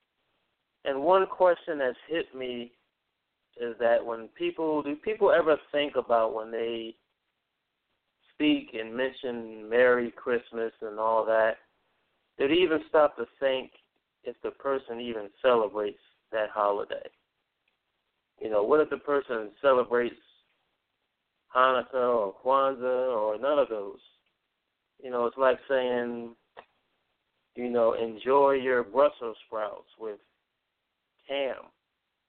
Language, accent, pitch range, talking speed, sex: English, American, 115-140 Hz, 120 wpm, male